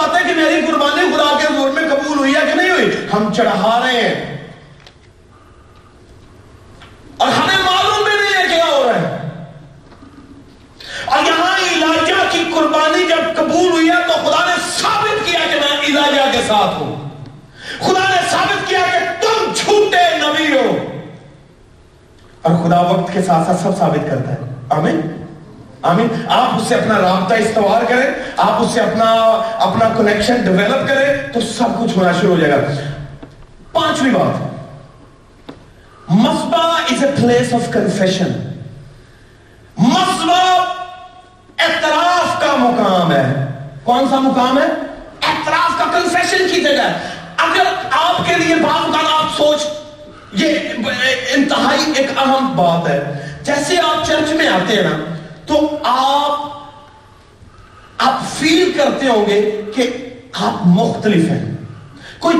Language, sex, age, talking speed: Urdu, male, 40-59, 105 wpm